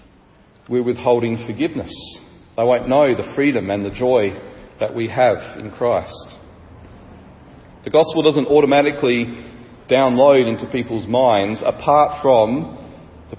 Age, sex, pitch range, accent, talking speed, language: 40-59, male, 115-155 Hz, Australian, 120 wpm, English